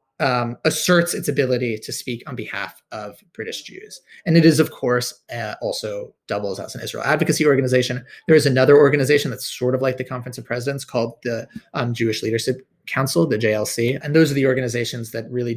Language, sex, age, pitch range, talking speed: English, male, 30-49, 115-150 Hz, 195 wpm